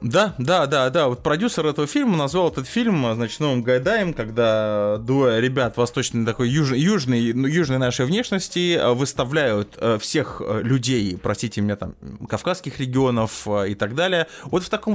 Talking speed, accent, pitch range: 150 wpm, native, 110-160 Hz